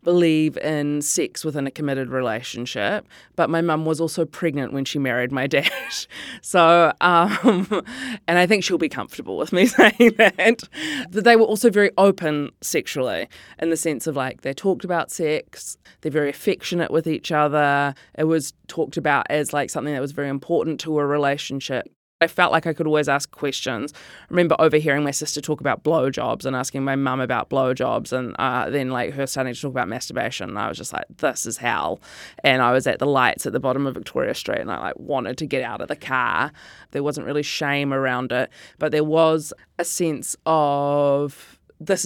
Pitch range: 135-170 Hz